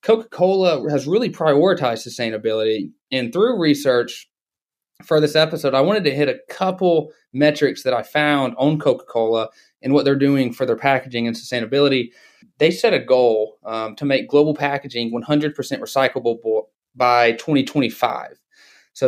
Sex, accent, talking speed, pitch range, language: male, American, 145 wpm, 120-150 Hz, English